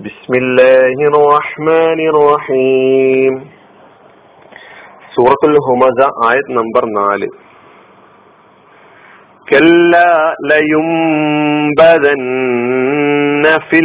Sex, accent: male, native